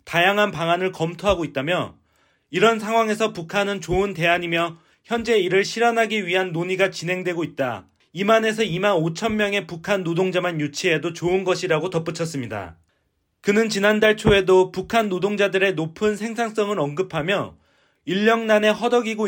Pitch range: 165-210 Hz